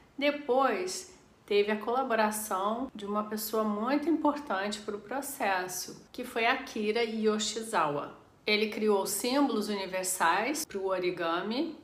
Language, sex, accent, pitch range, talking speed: Portuguese, female, Brazilian, 200-255 Hz, 115 wpm